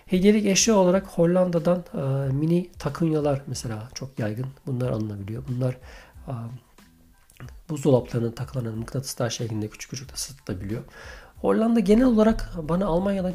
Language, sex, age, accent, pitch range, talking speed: Turkish, male, 50-69, native, 120-145 Hz, 115 wpm